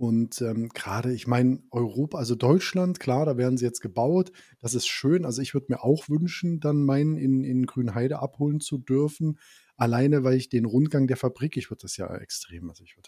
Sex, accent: male, German